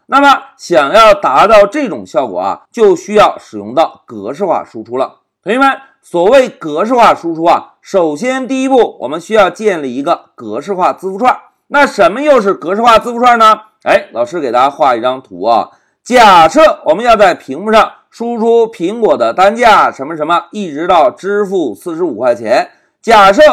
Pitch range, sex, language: 210-290 Hz, male, Chinese